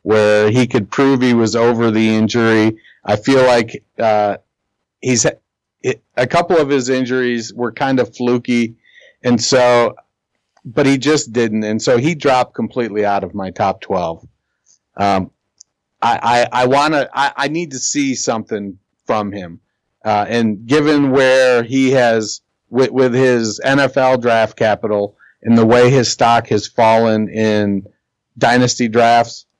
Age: 40-59